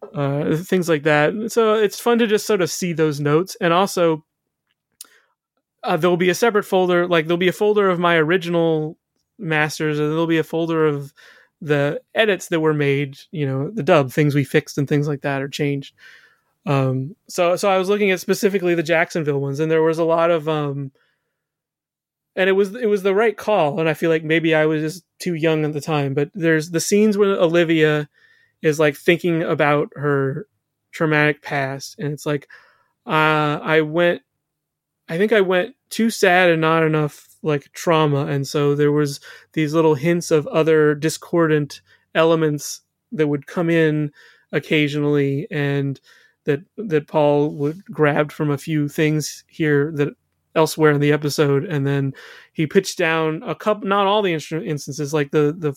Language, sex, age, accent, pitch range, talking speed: English, male, 30-49, American, 150-175 Hz, 180 wpm